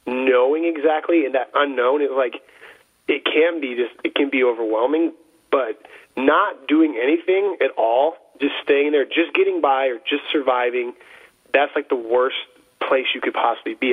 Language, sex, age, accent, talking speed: English, male, 30-49, American, 170 wpm